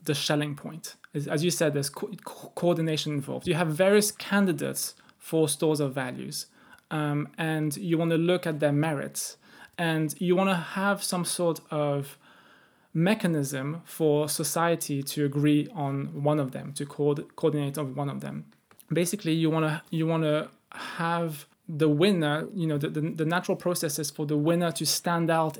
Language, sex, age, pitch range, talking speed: English, male, 20-39, 145-170 Hz, 170 wpm